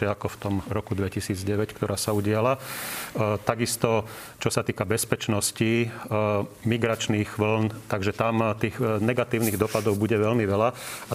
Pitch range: 105-120 Hz